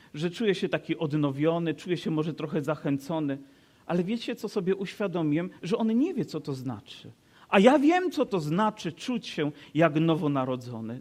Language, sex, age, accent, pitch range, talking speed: Polish, male, 40-59, native, 170-230 Hz, 175 wpm